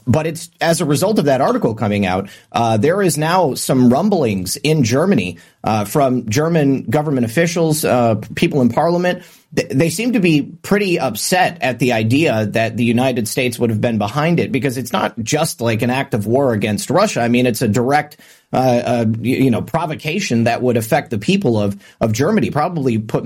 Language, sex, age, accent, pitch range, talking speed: English, male, 30-49, American, 115-150 Hz, 195 wpm